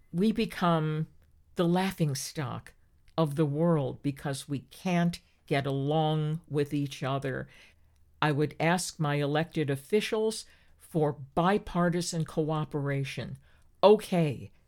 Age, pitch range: 50-69, 140-185 Hz